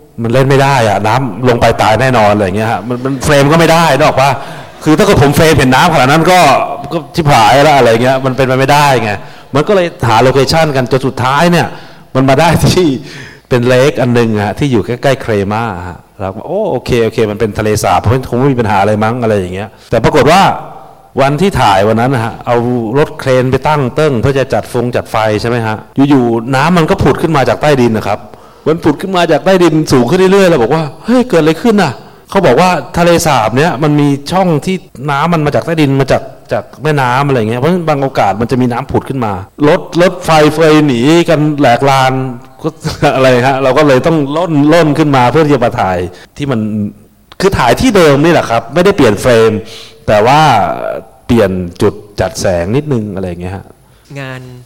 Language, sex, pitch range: English, male, 115-155 Hz